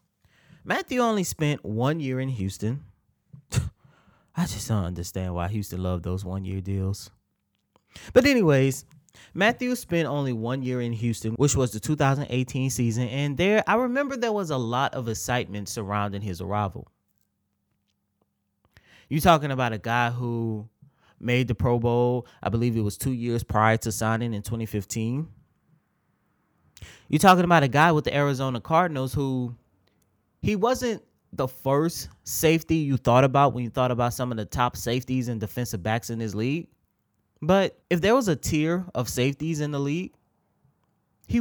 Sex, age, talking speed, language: male, 20-39, 160 wpm, English